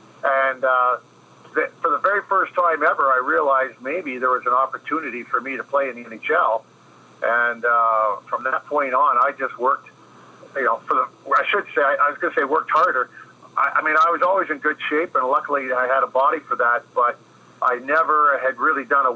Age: 50-69